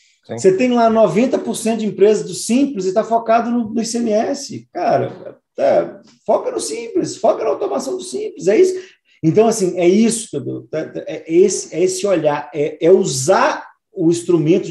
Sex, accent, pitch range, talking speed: male, Brazilian, 140-205 Hz, 160 wpm